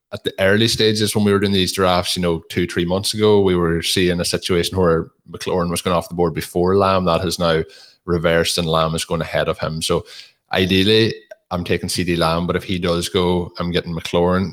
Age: 20-39